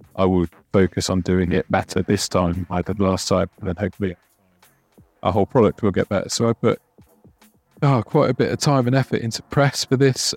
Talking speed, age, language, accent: 215 wpm, 30-49, English, British